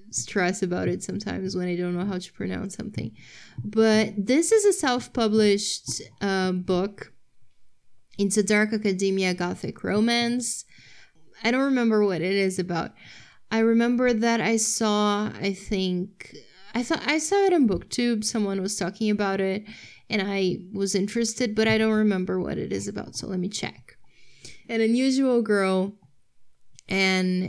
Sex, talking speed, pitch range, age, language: female, 155 wpm, 190-230 Hz, 20-39, English